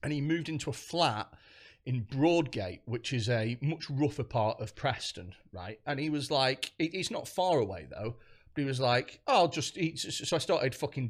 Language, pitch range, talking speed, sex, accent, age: English, 115-155 Hz, 205 wpm, male, British, 40-59